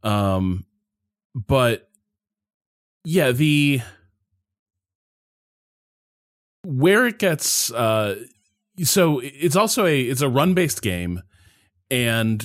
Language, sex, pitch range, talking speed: English, male, 95-130 Hz, 85 wpm